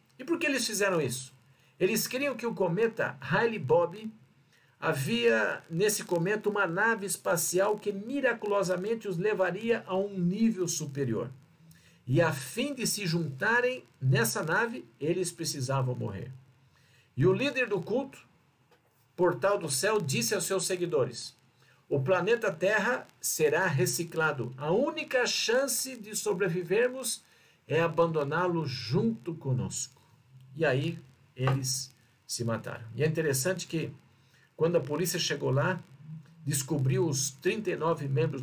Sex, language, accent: male, Portuguese, Brazilian